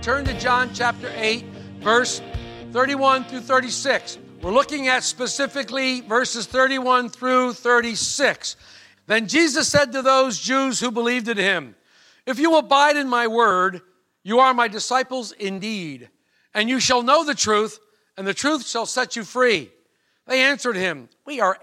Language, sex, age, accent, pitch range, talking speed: English, male, 50-69, American, 210-270 Hz, 155 wpm